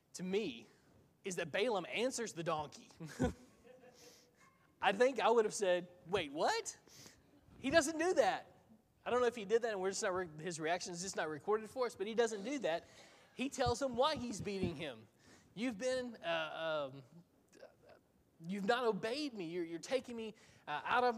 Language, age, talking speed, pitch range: English, 20-39, 190 wpm, 160-225 Hz